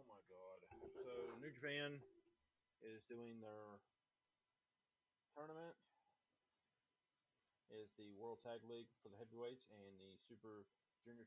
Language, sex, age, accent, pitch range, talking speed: English, male, 30-49, American, 115-135 Hz, 120 wpm